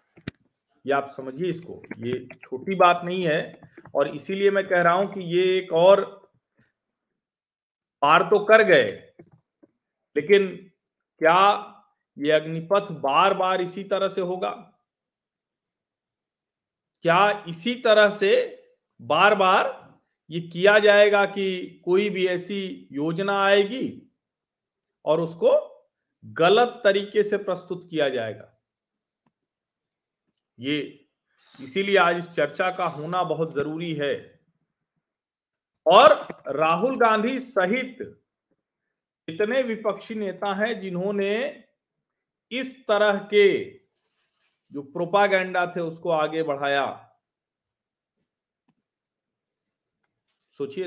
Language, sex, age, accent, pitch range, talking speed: Hindi, male, 40-59, native, 160-205 Hz, 100 wpm